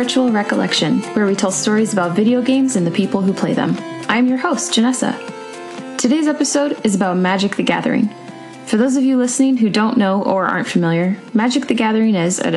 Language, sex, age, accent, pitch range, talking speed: English, female, 20-39, American, 185-255 Hz, 200 wpm